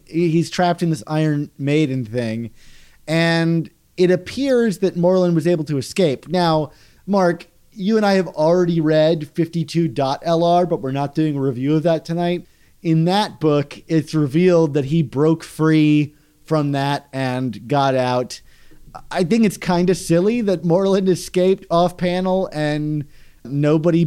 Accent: American